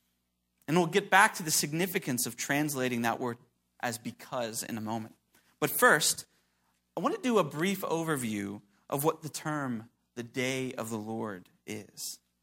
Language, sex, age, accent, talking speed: English, male, 30-49, American, 170 wpm